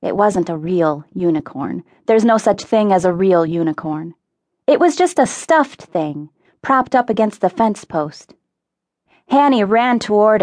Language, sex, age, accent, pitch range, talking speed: English, female, 30-49, American, 180-225 Hz, 160 wpm